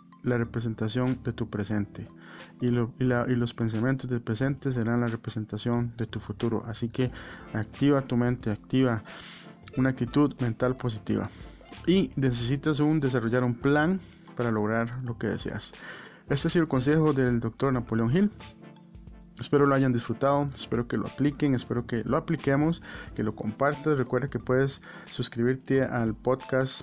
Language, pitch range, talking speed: Spanish, 115-135 Hz, 160 wpm